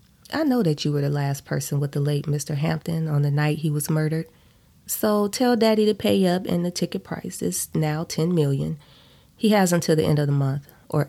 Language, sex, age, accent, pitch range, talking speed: English, female, 20-39, American, 145-190 Hz, 225 wpm